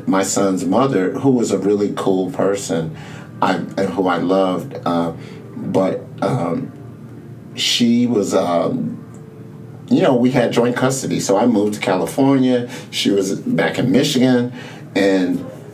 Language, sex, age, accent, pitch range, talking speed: English, male, 50-69, American, 95-125 Hz, 140 wpm